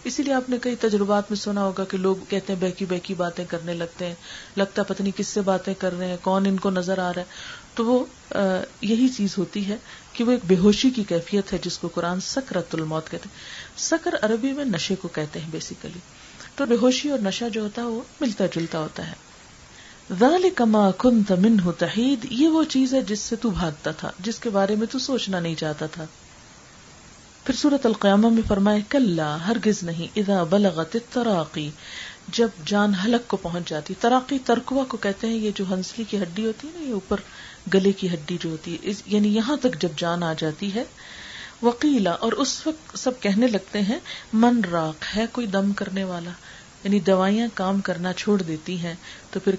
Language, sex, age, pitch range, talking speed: Urdu, female, 40-59, 180-230 Hz, 210 wpm